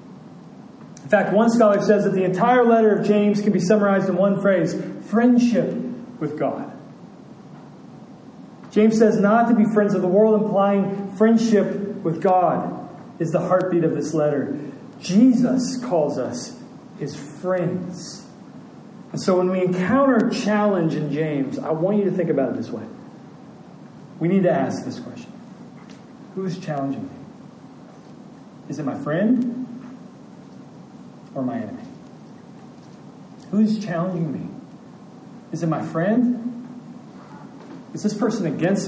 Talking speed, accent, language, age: 135 wpm, American, English, 40-59